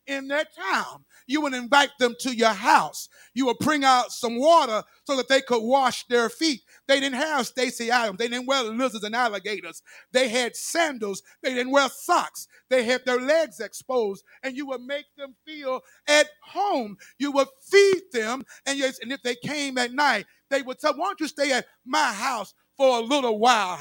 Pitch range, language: 240-300 Hz, English